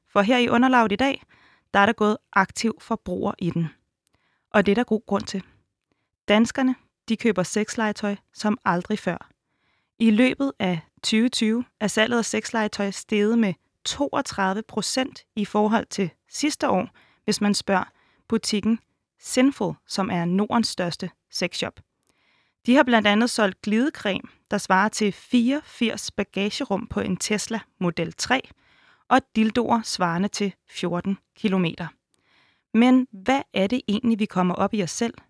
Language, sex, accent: Danish, female, native